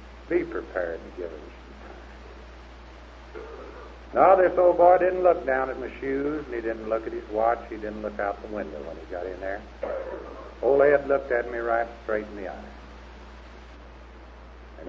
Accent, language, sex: American, English, male